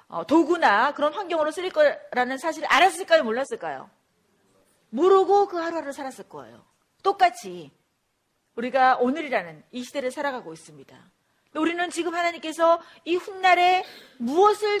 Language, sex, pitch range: Korean, female, 235-335 Hz